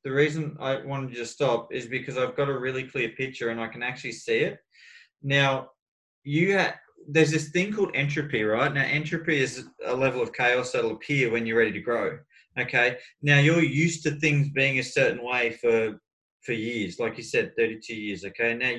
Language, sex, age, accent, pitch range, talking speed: English, male, 20-39, Australian, 120-150 Hz, 205 wpm